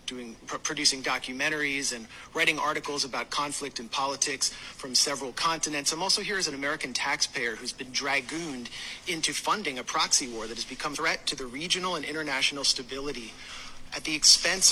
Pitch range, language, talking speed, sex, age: 130-175 Hz, English, 170 wpm, male, 40-59